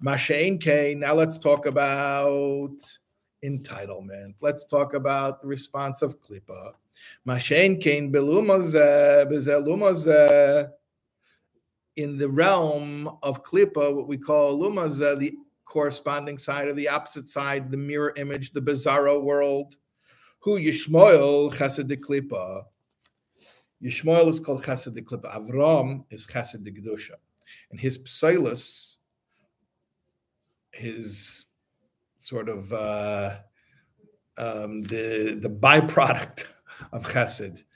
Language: English